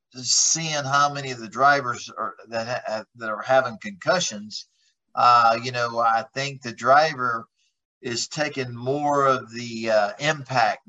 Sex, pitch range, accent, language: male, 115-135 Hz, American, English